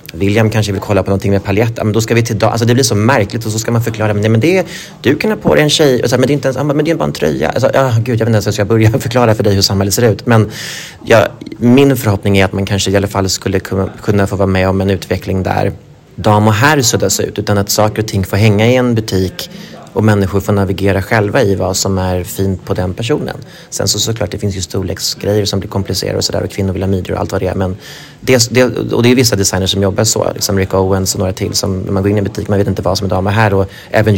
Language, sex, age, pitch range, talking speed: Swedish, male, 30-49, 95-115 Hz, 295 wpm